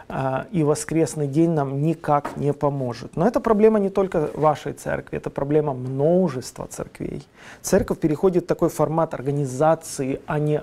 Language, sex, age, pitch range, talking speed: Russian, male, 40-59, 150-190 Hz, 145 wpm